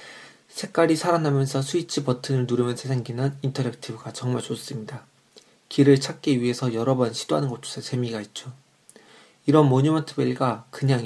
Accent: native